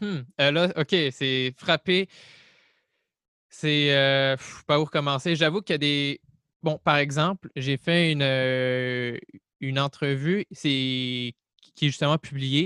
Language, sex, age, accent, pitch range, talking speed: French, male, 20-39, Canadian, 135-165 Hz, 145 wpm